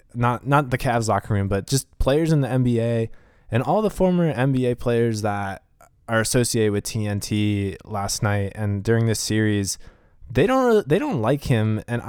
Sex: male